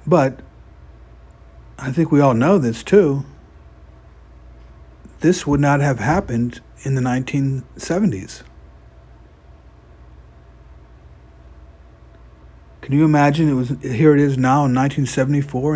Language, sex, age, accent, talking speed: English, male, 50-69, American, 105 wpm